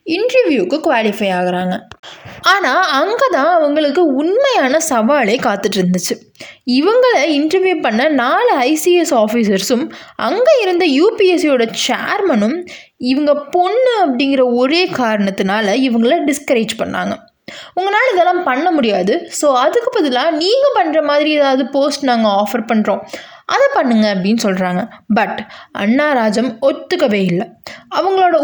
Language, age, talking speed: Tamil, 20-39, 110 wpm